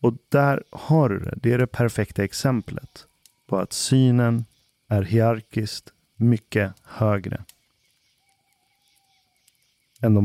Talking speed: 105 wpm